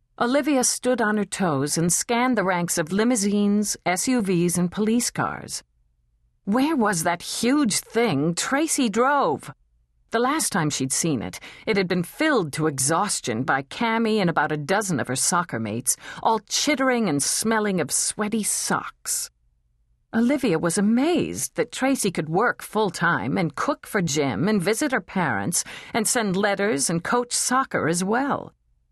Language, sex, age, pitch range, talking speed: English, female, 50-69, 140-225 Hz, 155 wpm